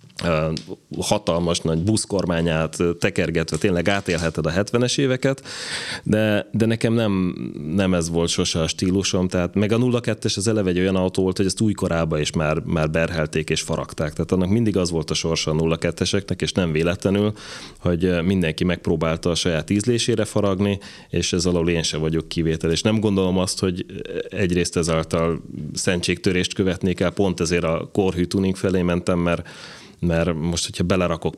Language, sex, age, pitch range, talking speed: Hungarian, male, 30-49, 80-95 Hz, 165 wpm